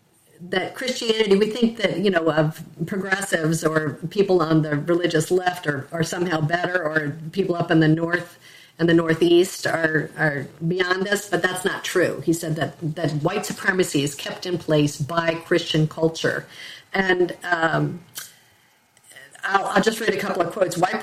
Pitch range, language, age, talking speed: 160-195 Hz, English, 50-69, 170 wpm